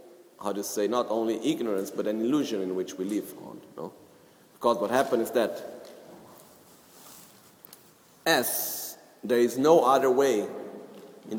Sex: male